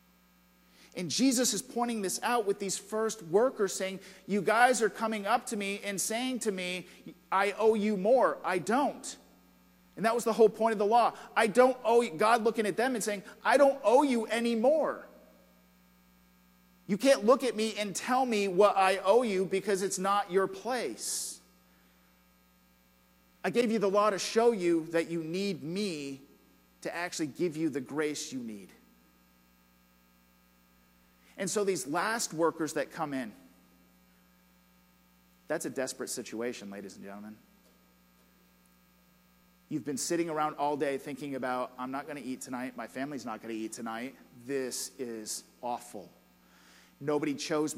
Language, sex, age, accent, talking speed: English, male, 40-59, American, 165 wpm